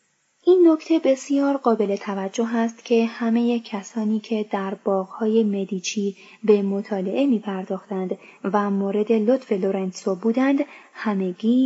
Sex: female